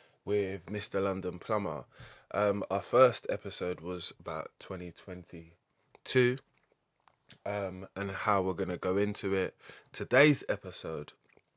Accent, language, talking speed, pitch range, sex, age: British, English, 115 wpm, 90-105 Hz, male, 20-39